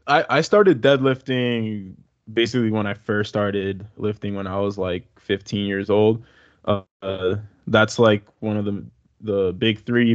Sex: male